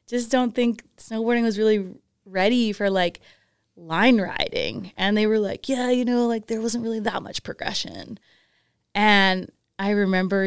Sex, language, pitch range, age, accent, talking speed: female, English, 175-220 Hz, 20-39, American, 160 wpm